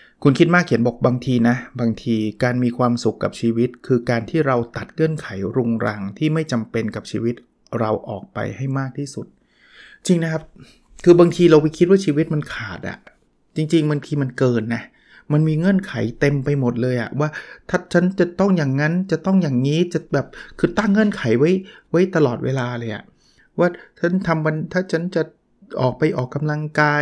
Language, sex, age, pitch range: Thai, male, 20-39, 125-165 Hz